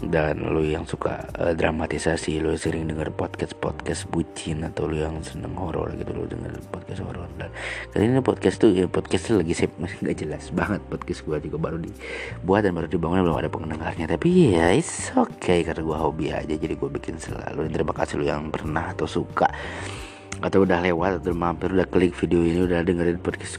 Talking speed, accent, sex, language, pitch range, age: 195 wpm, native, male, Indonesian, 80-90 Hz, 30-49